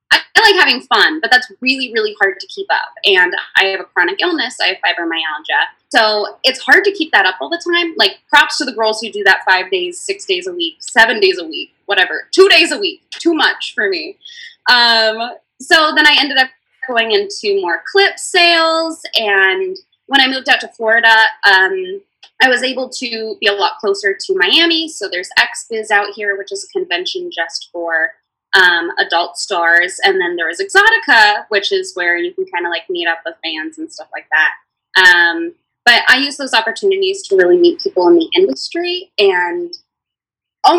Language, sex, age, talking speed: English, female, 20-39, 205 wpm